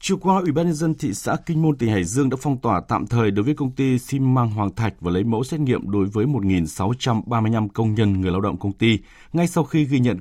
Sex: male